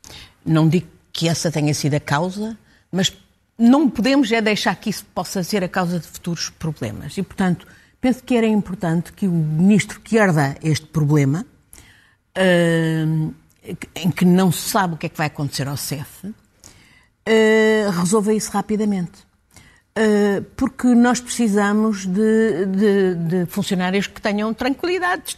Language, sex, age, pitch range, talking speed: Portuguese, female, 50-69, 165-205 Hz, 150 wpm